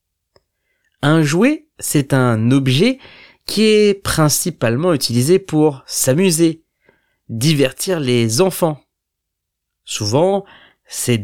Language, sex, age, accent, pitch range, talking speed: French, male, 30-49, French, 110-170 Hz, 85 wpm